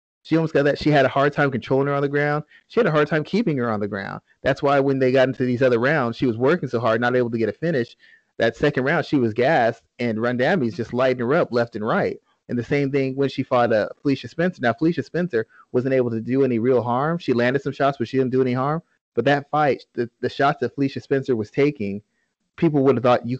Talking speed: 270 wpm